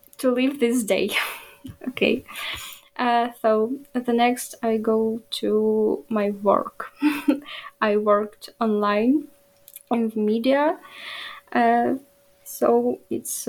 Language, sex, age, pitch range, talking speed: English, female, 10-29, 225-280 Hz, 100 wpm